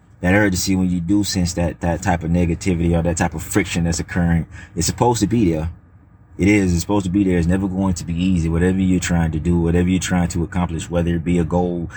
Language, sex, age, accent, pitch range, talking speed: English, male, 30-49, American, 85-100 Hz, 255 wpm